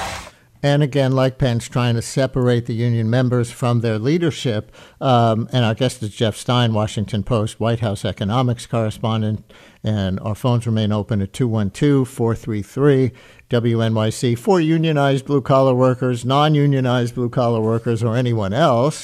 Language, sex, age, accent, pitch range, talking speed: English, male, 60-79, American, 110-130 Hz, 135 wpm